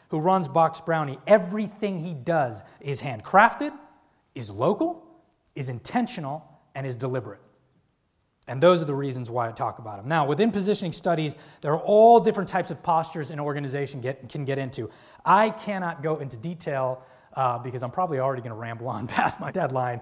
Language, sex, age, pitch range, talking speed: English, male, 20-39, 130-180 Hz, 175 wpm